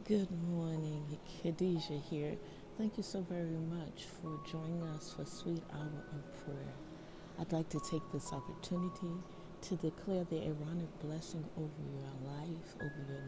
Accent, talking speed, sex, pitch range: American, 150 wpm, female, 150-180 Hz